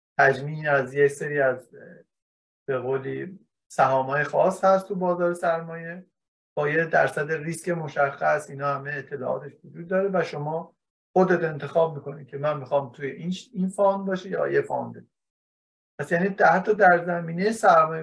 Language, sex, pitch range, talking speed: Persian, male, 140-185 Hz, 150 wpm